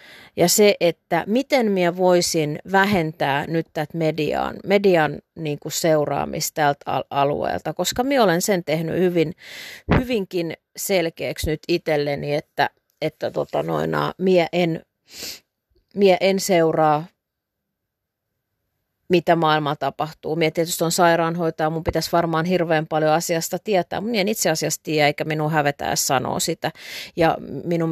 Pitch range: 150-180 Hz